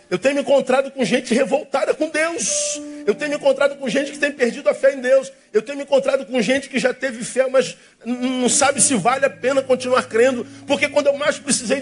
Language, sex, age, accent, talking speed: Spanish, male, 50-69, Brazilian, 235 wpm